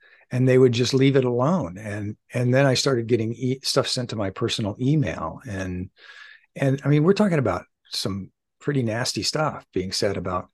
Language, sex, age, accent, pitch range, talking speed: English, male, 50-69, American, 105-135 Hz, 195 wpm